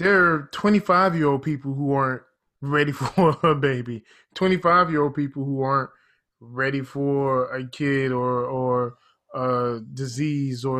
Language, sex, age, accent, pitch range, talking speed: English, male, 20-39, American, 130-165 Hz, 130 wpm